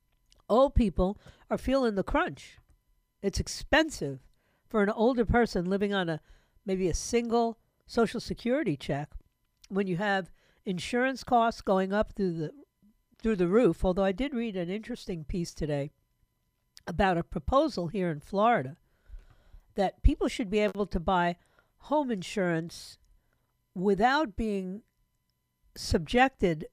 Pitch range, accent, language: 170-225 Hz, American, English